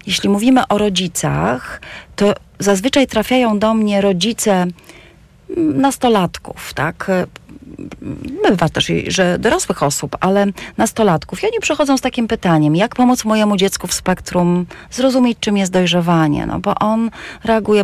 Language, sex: Polish, female